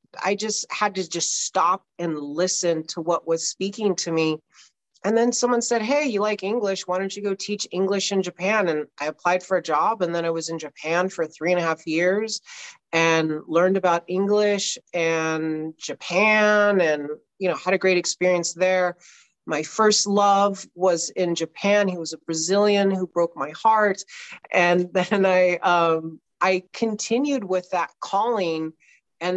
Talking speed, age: 175 wpm, 40-59